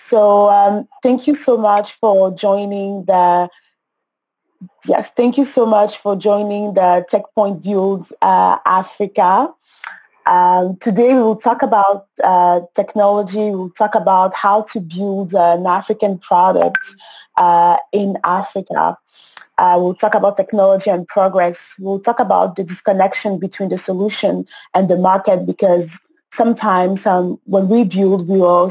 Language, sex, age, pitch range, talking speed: English, female, 20-39, 185-220 Hz, 140 wpm